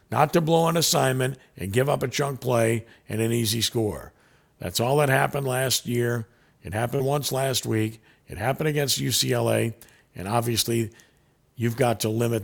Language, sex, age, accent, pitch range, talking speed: English, male, 50-69, American, 110-130 Hz, 175 wpm